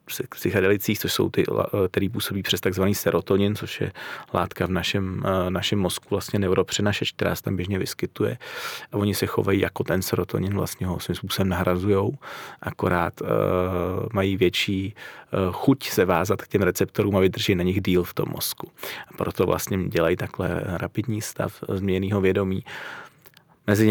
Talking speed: 155 wpm